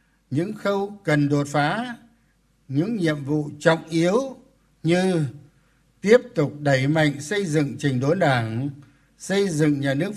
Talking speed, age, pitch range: 140 wpm, 60-79, 140-180 Hz